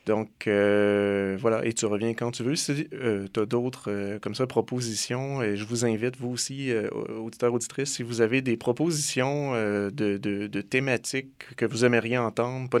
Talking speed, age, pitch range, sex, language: 195 wpm, 30-49, 105-125 Hz, male, French